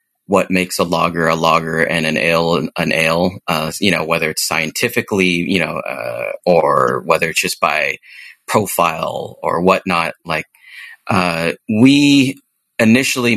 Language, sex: English, male